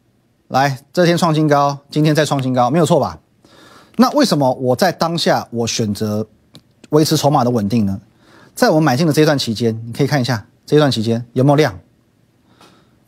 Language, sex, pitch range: Chinese, male, 120-175 Hz